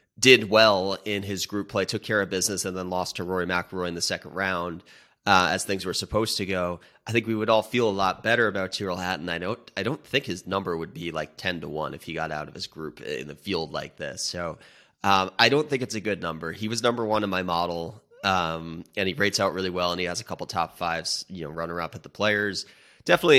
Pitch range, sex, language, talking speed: 90-105 Hz, male, English, 260 wpm